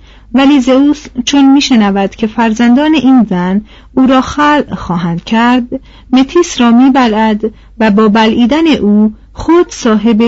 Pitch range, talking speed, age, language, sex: 205-265 Hz, 130 wpm, 40-59, Persian, female